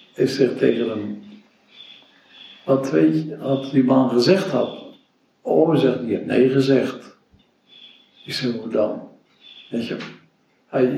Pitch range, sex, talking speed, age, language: 125-145 Hz, male, 135 wpm, 60-79, Dutch